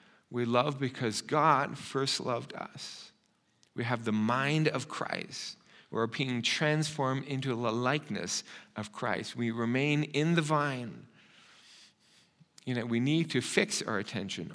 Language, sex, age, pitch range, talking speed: English, male, 50-69, 115-170 Hz, 140 wpm